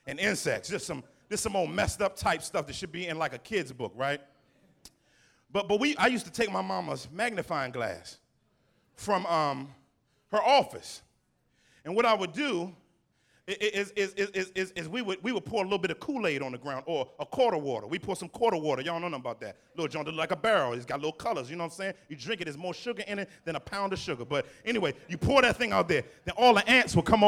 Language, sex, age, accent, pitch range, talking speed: English, male, 30-49, American, 155-215 Hz, 255 wpm